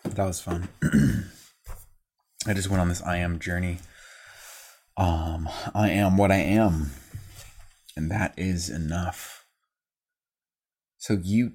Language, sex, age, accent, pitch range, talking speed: English, male, 30-49, American, 80-100 Hz, 120 wpm